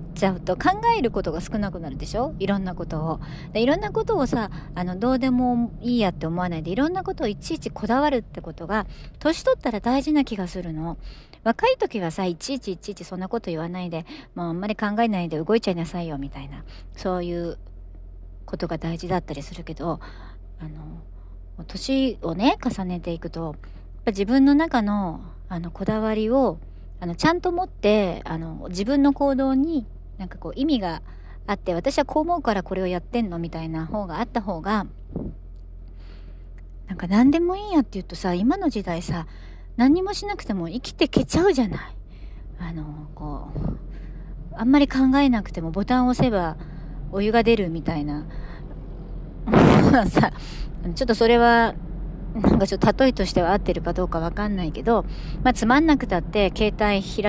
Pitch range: 165-235 Hz